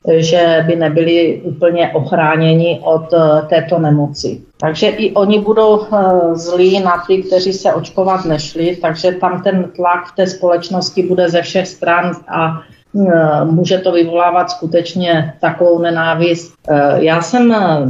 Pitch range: 160-185 Hz